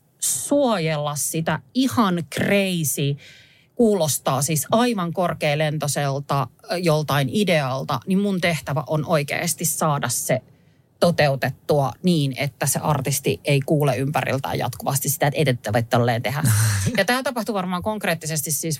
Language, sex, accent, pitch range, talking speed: Finnish, female, native, 140-190 Hz, 115 wpm